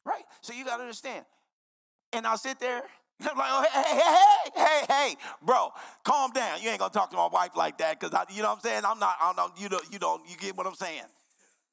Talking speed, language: 255 wpm, English